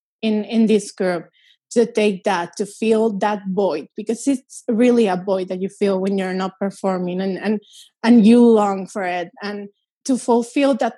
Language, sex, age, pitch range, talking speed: English, female, 20-39, 210-255 Hz, 185 wpm